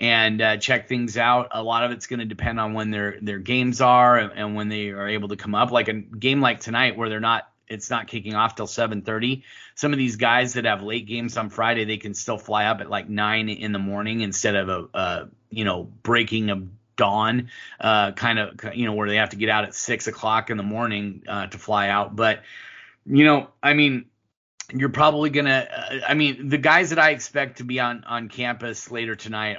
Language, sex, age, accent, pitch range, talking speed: English, male, 30-49, American, 105-120 Hz, 235 wpm